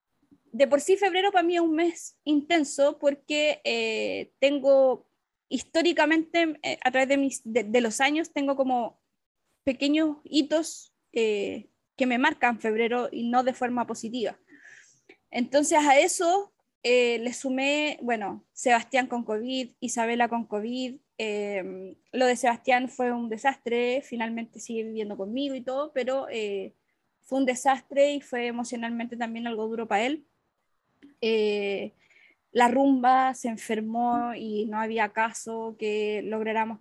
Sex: female